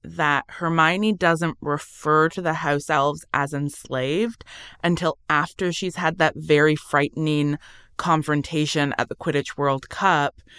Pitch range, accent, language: 140-165 Hz, American, English